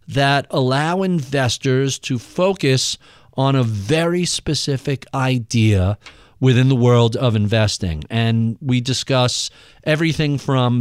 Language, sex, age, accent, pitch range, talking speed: English, male, 50-69, American, 120-150 Hz, 110 wpm